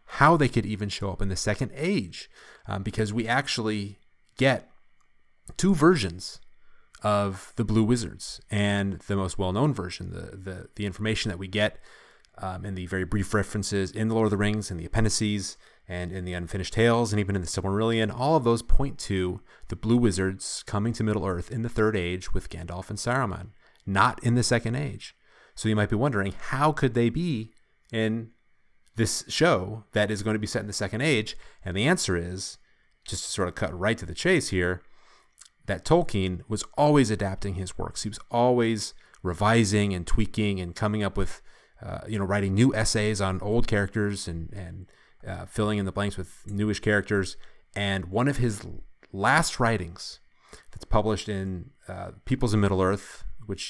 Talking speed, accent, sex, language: 190 wpm, American, male, English